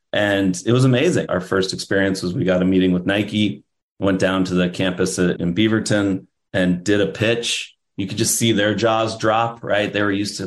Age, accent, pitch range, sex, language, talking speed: 30-49, American, 95-125 Hz, male, English, 210 wpm